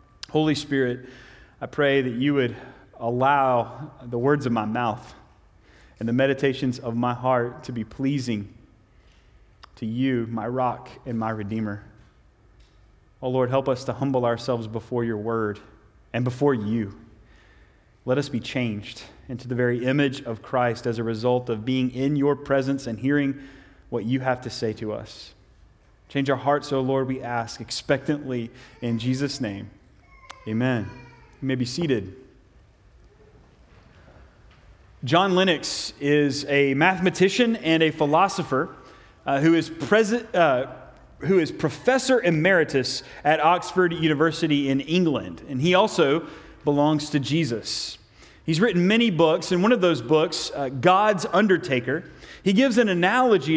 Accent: American